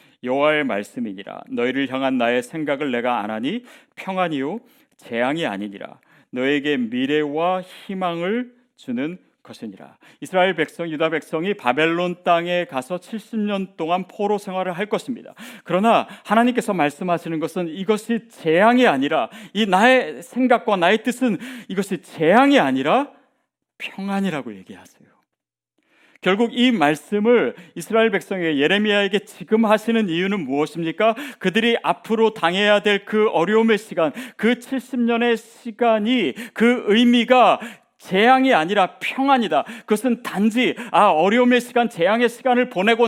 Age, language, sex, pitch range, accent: 40-59, Korean, male, 180-250 Hz, native